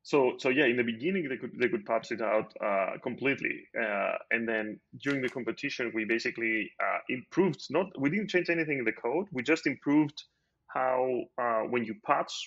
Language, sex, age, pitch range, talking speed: English, male, 20-39, 110-130 Hz, 195 wpm